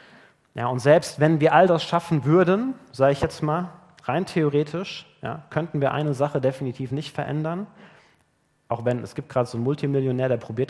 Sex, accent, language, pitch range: male, German, German, 115-150 Hz